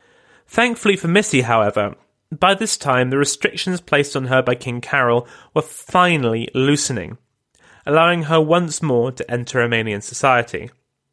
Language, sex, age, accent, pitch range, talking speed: English, male, 30-49, British, 130-175 Hz, 140 wpm